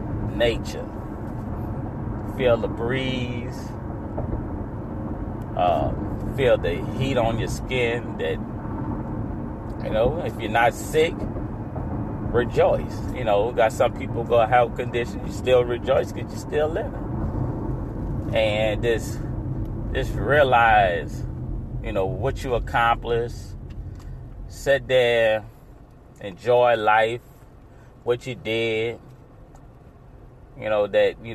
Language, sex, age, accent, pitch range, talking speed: English, male, 30-49, American, 105-120 Hz, 105 wpm